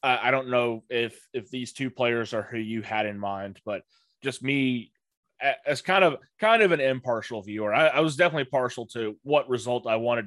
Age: 20-39